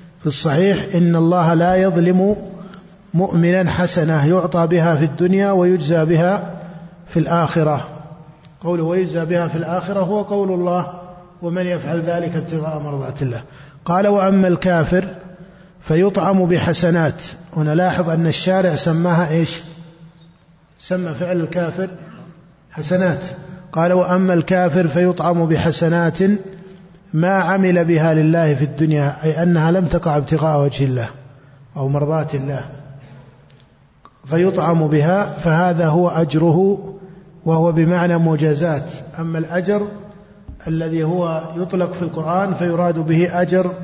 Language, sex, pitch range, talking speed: Arabic, male, 160-185 Hz, 115 wpm